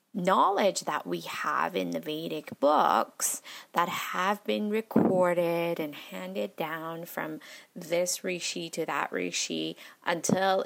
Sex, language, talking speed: female, English, 125 wpm